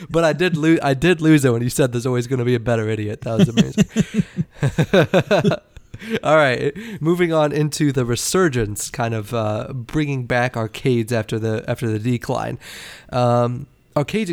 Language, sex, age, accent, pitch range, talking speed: English, male, 30-49, American, 115-145 Hz, 175 wpm